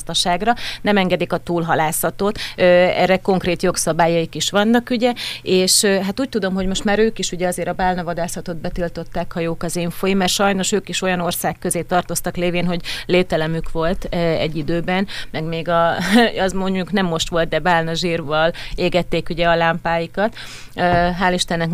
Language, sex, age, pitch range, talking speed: Hungarian, female, 30-49, 170-190 Hz, 165 wpm